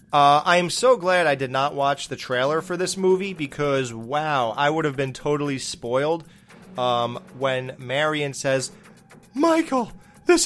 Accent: American